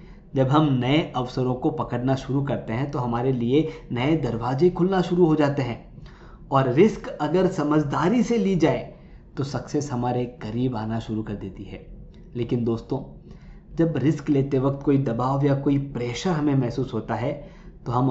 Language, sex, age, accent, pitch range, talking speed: Hindi, male, 20-39, native, 115-155 Hz, 170 wpm